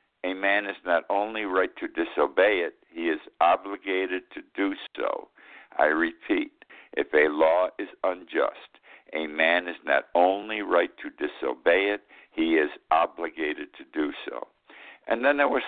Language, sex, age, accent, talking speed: English, male, 60-79, American, 155 wpm